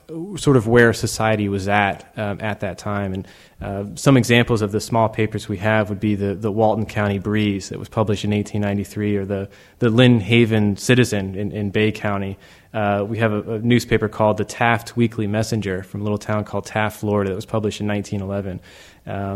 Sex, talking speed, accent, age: male, 200 wpm, American, 20-39